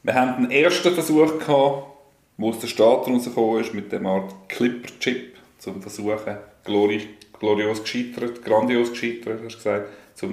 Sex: male